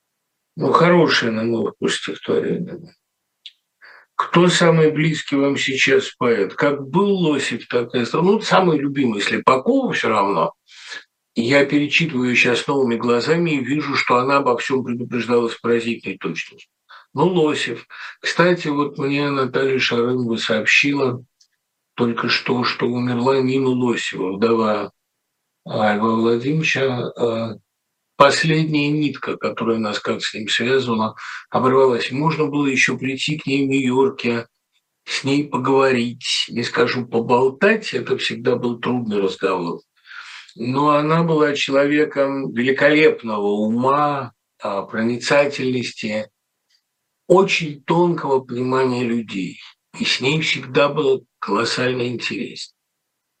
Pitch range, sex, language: 120-145 Hz, male, Russian